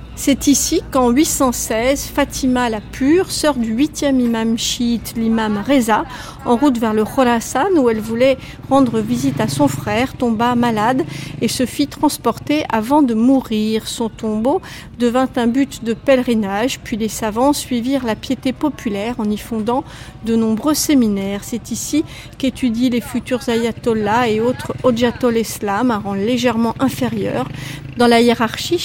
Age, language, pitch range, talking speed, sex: 50-69, French, 225-270 Hz, 150 wpm, female